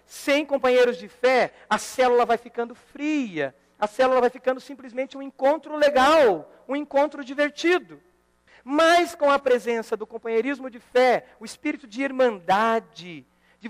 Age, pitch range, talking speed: 50-69, 205-280 Hz, 145 wpm